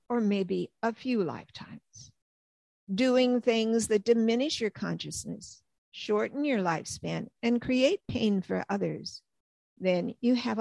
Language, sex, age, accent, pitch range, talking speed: English, female, 50-69, American, 185-240 Hz, 125 wpm